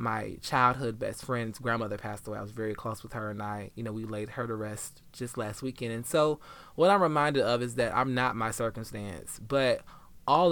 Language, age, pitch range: English, 20-39, 110-140 Hz